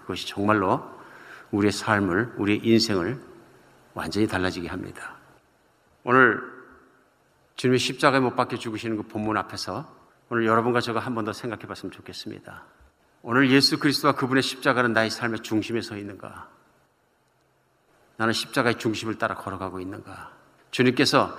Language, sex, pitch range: Korean, male, 95-120 Hz